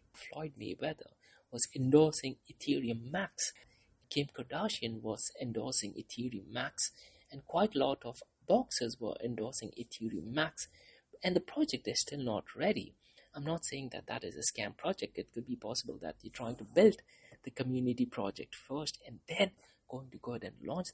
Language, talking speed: English, 170 wpm